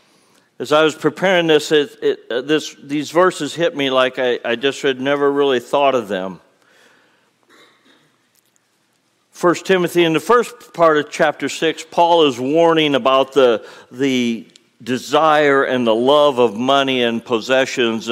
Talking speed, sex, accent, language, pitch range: 150 wpm, male, American, English, 130-160 Hz